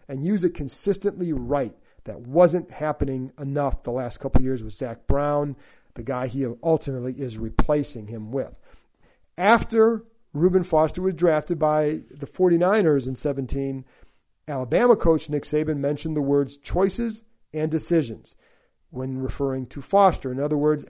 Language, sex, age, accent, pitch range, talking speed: English, male, 40-59, American, 130-160 Hz, 150 wpm